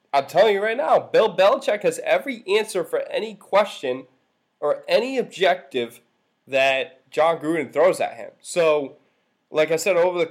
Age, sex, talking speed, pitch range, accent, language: 20-39, male, 165 wpm, 135-195 Hz, American, English